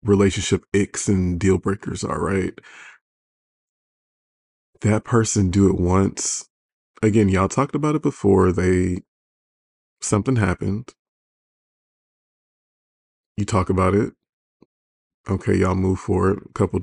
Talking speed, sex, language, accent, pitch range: 110 wpm, male, English, American, 90-100 Hz